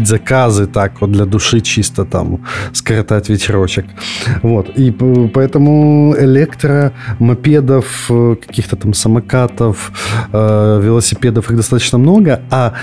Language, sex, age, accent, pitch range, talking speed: Russian, male, 20-39, native, 100-120 Hz, 105 wpm